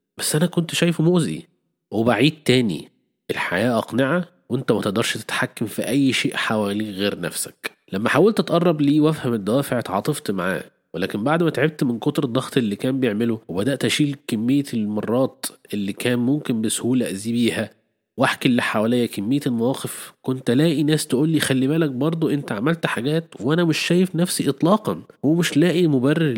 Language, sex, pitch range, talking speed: Arabic, male, 120-155 Hz, 160 wpm